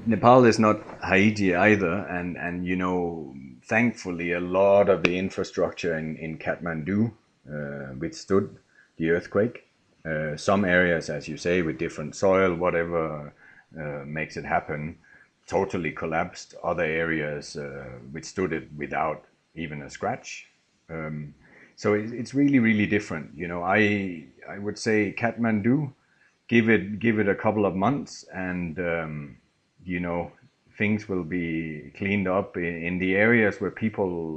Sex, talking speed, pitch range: male, 145 wpm, 80-105 Hz